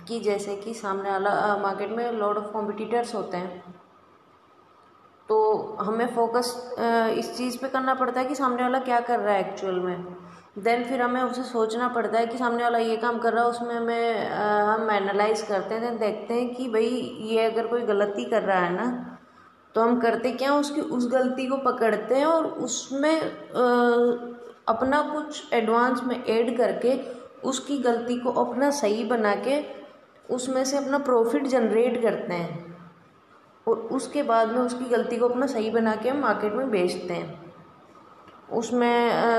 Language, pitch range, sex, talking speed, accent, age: Hindi, 220-250 Hz, female, 175 wpm, native, 20-39